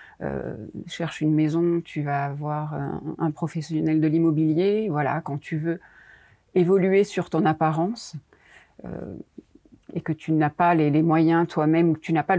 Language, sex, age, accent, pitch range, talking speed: French, female, 40-59, French, 150-175 Hz, 180 wpm